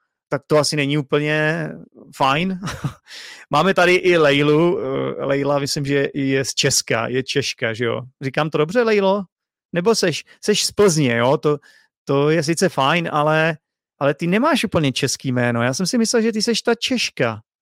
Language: Czech